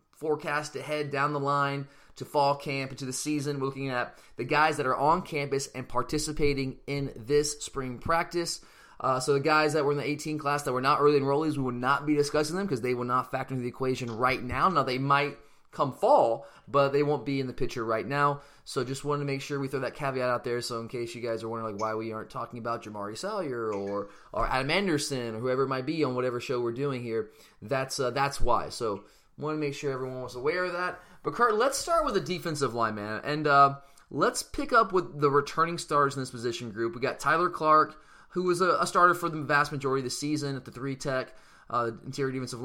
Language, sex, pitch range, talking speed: English, male, 125-150 Hz, 240 wpm